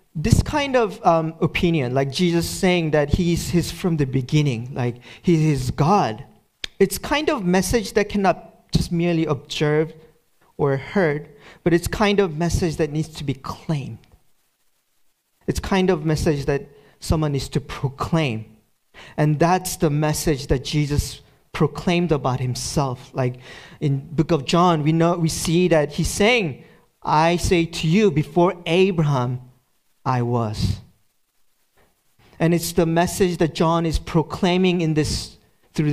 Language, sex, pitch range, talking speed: English, male, 140-175 Hz, 145 wpm